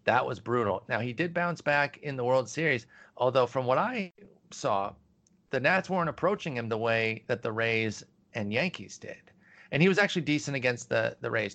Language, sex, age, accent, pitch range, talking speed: English, male, 40-59, American, 105-135 Hz, 205 wpm